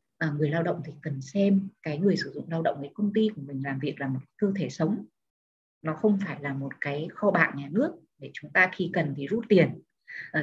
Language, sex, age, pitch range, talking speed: Vietnamese, female, 20-39, 155-200 Hz, 255 wpm